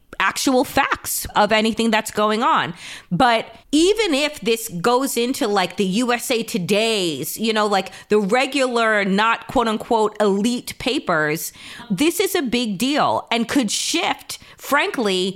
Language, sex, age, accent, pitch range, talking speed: English, female, 30-49, American, 220-295 Hz, 135 wpm